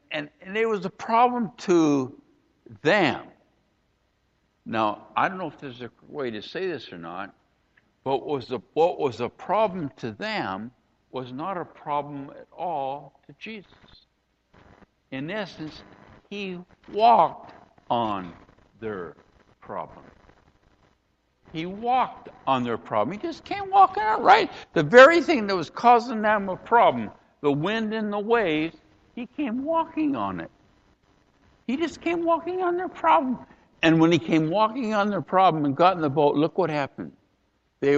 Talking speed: 155 wpm